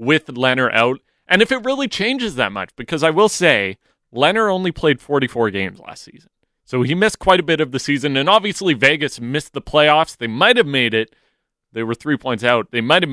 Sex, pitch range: male, 115-155 Hz